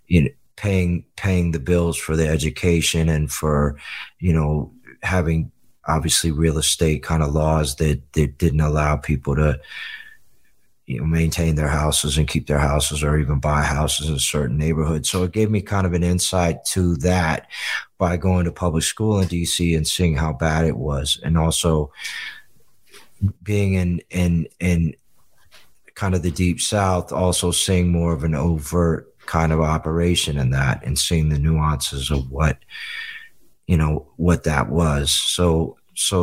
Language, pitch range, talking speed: English, 75-90 Hz, 165 wpm